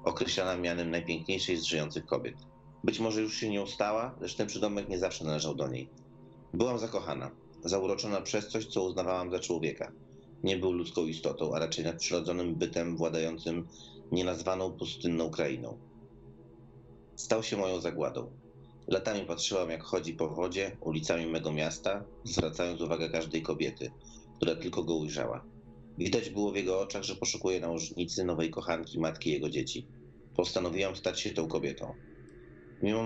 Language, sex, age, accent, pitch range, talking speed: Polish, male, 30-49, native, 80-95 Hz, 145 wpm